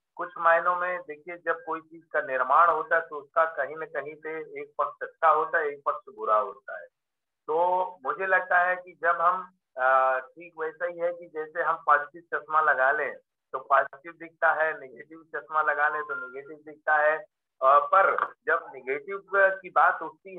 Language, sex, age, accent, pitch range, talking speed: Hindi, male, 50-69, native, 150-195 Hz, 190 wpm